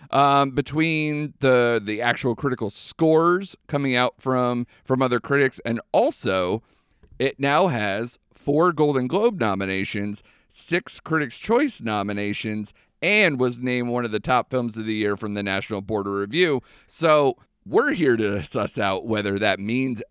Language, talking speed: English, 150 wpm